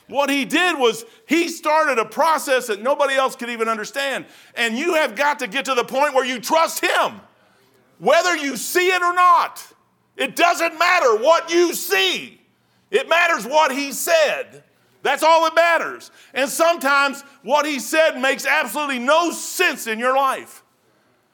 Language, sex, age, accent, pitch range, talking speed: English, male, 50-69, American, 210-310 Hz, 170 wpm